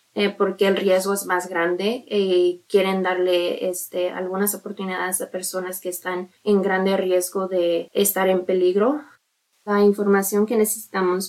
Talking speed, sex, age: 150 wpm, female, 20-39